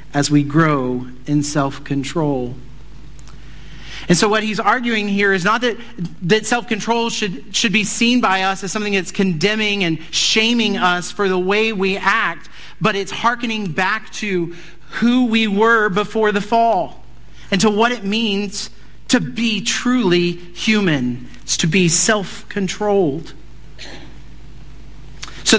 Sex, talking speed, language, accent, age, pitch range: male, 140 wpm, English, American, 40-59, 150-205 Hz